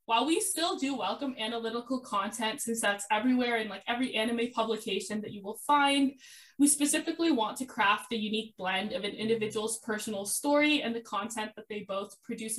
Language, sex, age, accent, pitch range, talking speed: English, female, 10-29, American, 215-275 Hz, 185 wpm